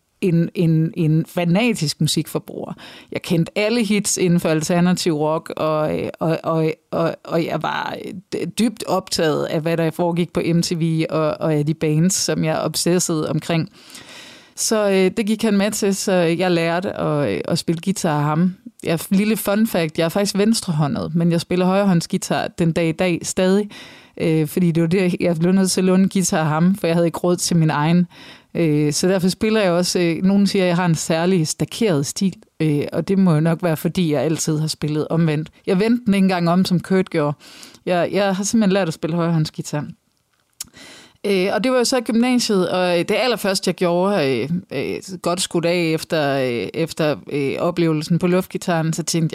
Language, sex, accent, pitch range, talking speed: Danish, female, native, 160-195 Hz, 190 wpm